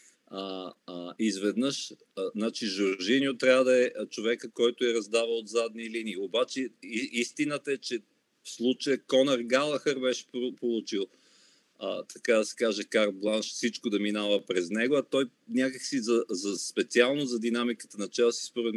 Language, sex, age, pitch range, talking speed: Bulgarian, male, 40-59, 110-140 Hz, 155 wpm